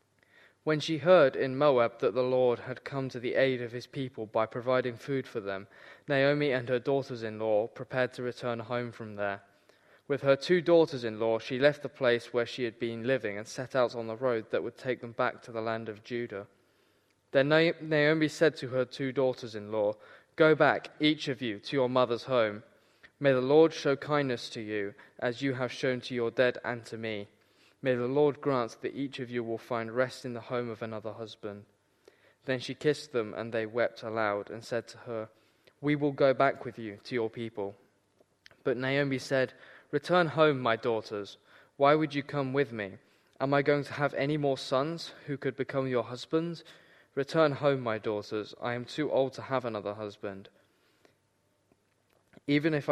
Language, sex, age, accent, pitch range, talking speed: English, male, 10-29, British, 115-140 Hz, 195 wpm